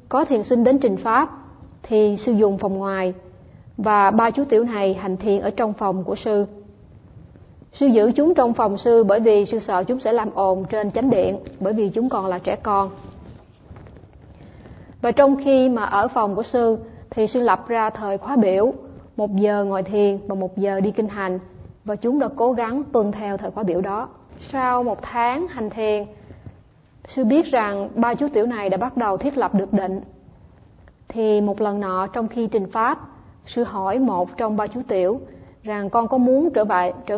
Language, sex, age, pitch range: Vietnamese, female, 20-39, 200-245 Hz